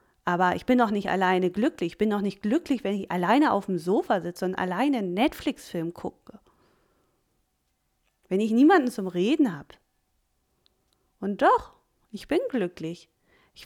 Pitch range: 185-235 Hz